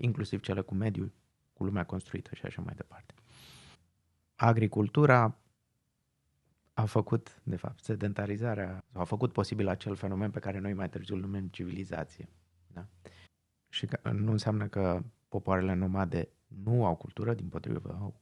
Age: 30-49